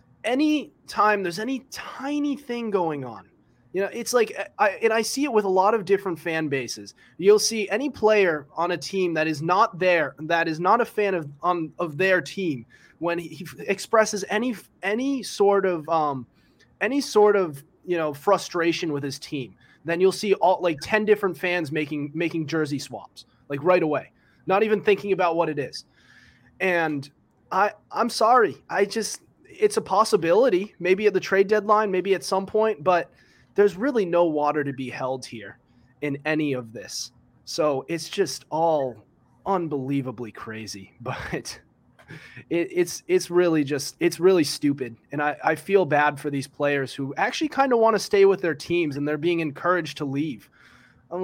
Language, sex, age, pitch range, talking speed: English, male, 20-39, 145-200 Hz, 180 wpm